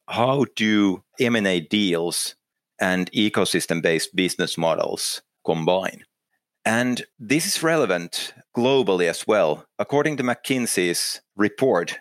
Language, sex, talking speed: English, male, 100 wpm